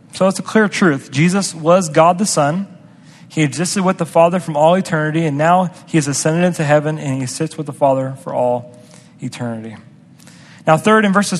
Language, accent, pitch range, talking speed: English, American, 140-175 Hz, 200 wpm